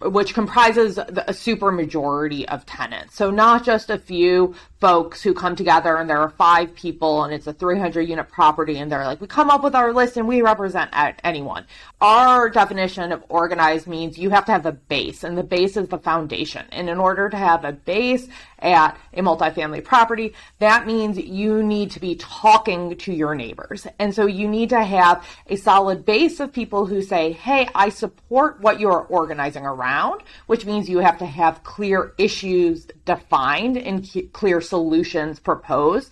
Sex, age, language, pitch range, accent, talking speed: female, 30-49, English, 170-225 Hz, American, 185 wpm